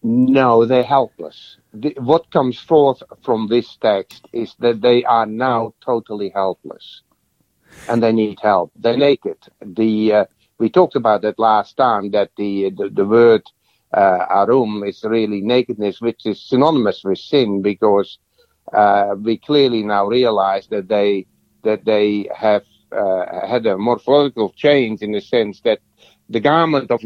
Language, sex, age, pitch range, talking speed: English, male, 60-79, 105-130 Hz, 155 wpm